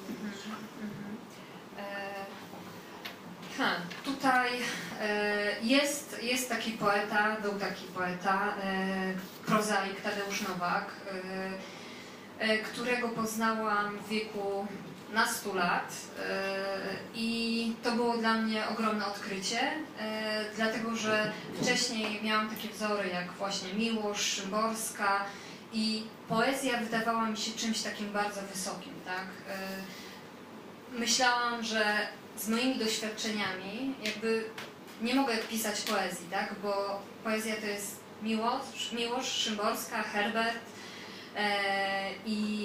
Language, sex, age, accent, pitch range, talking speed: Czech, female, 20-39, Polish, 200-230 Hz, 100 wpm